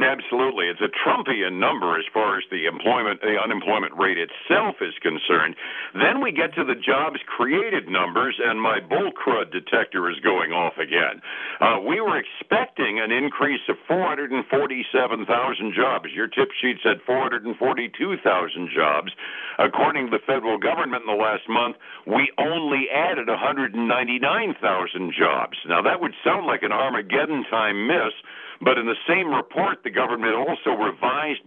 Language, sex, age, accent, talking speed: English, male, 60-79, American, 155 wpm